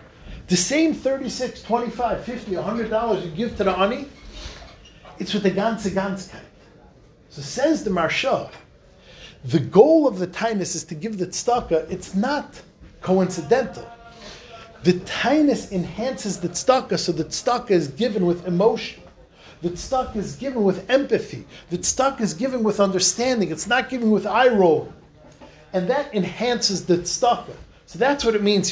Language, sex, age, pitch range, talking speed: English, male, 40-59, 185-250 Hz, 150 wpm